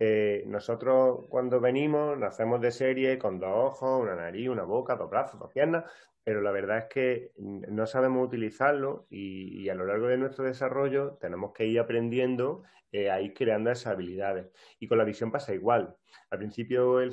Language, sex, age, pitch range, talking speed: Spanish, male, 30-49, 105-130 Hz, 185 wpm